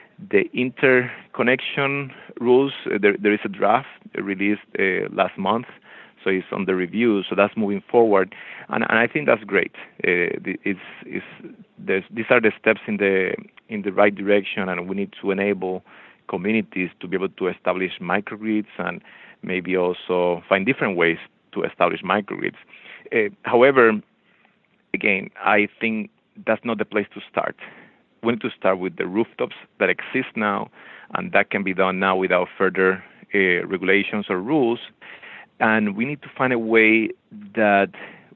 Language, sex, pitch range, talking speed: English, male, 95-135 Hz, 165 wpm